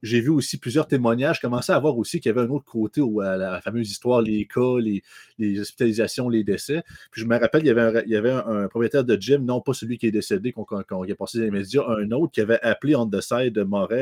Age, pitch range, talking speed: 30-49, 110-135 Hz, 295 wpm